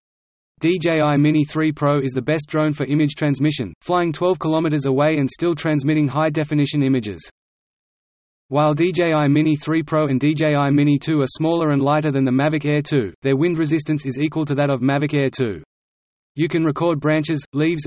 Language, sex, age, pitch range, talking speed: English, male, 30-49, 140-155 Hz, 185 wpm